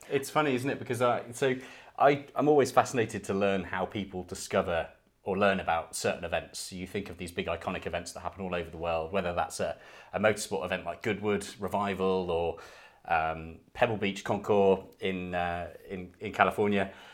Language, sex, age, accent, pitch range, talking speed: English, male, 30-49, British, 95-115 Hz, 185 wpm